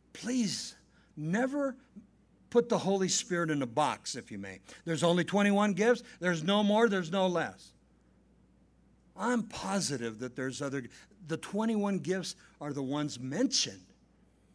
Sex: male